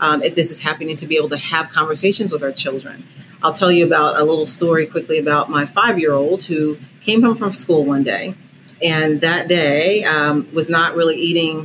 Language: English